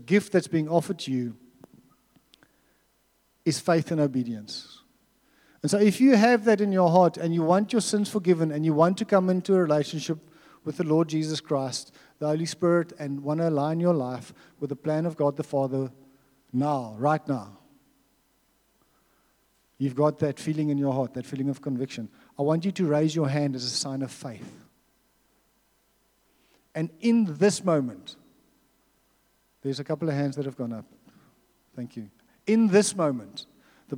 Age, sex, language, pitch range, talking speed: 50-69, male, English, 130-175 Hz, 175 wpm